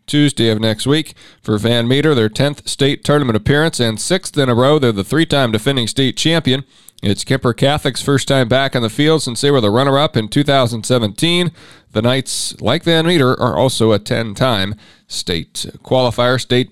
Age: 40-59